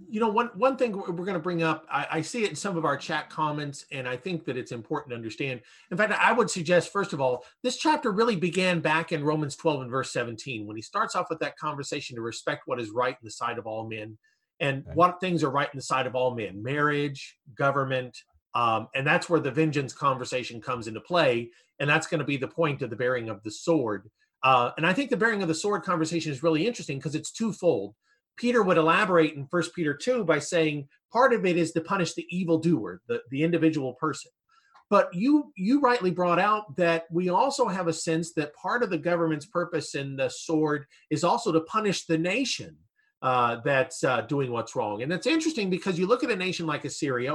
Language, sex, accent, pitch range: English, male, American, 145-200 Hz